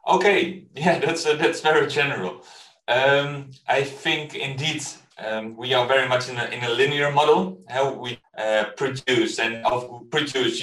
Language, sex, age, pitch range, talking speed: Polish, male, 30-49, 125-170 Hz, 165 wpm